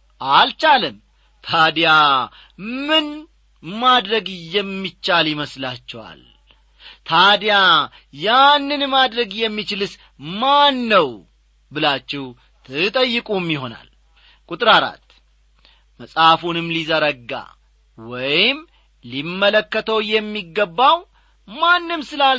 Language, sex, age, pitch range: English, male, 40-59, 150-215 Hz